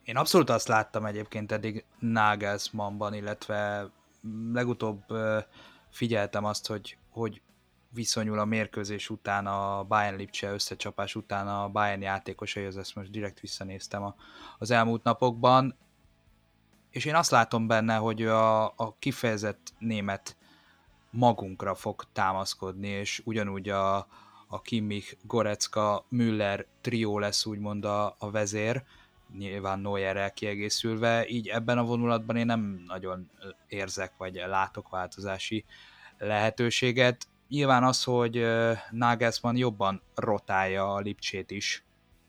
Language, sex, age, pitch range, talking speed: Hungarian, male, 20-39, 100-115 Hz, 115 wpm